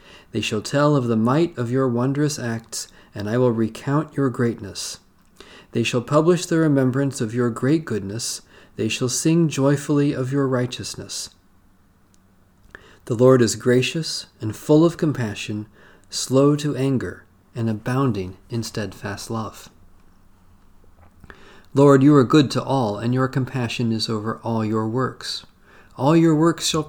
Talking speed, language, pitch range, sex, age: 145 wpm, English, 105-140 Hz, male, 40-59